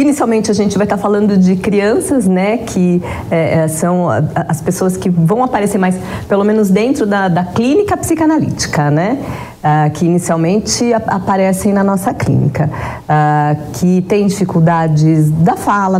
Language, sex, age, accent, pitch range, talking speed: Portuguese, female, 40-59, Brazilian, 180-215 Hz, 145 wpm